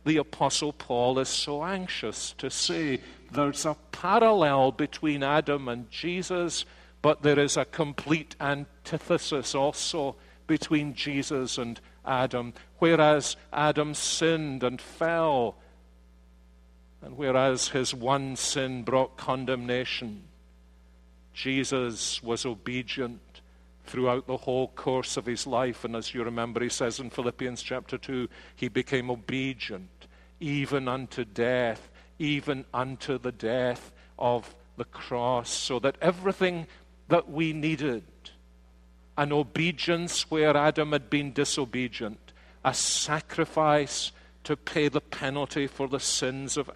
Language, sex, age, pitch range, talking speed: English, male, 50-69, 120-155 Hz, 120 wpm